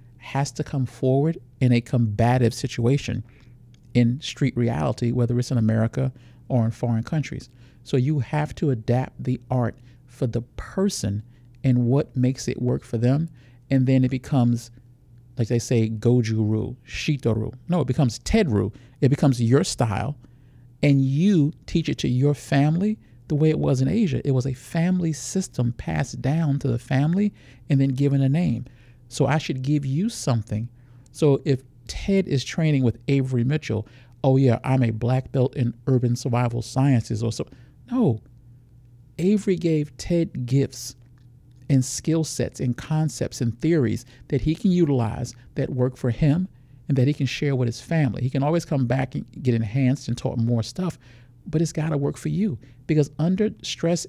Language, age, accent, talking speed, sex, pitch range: English, 50-69, American, 175 wpm, male, 120-150 Hz